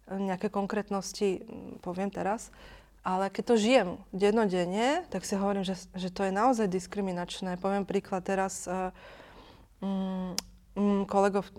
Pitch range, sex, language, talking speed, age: 185-210 Hz, female, Slovak, 125 wpm, 20-39